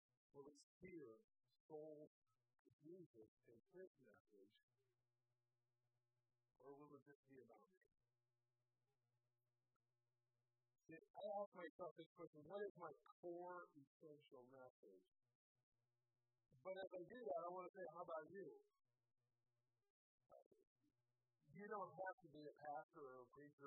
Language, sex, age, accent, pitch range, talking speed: English, male, 50-69, American, 120-170 Hz, 125 wpm